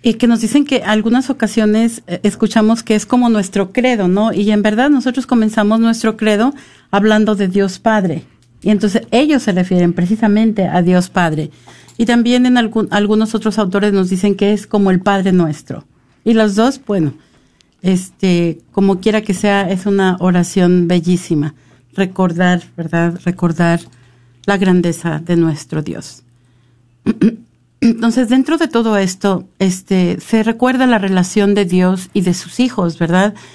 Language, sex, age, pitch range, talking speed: Spanish, female, 50-69, 180-225 Hz, 155 wpm